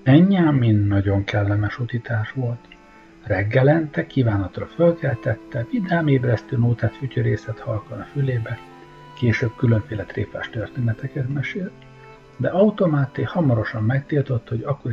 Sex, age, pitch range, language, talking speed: male, 60-79, 110-145 Hz, Hungarian, 105 wpm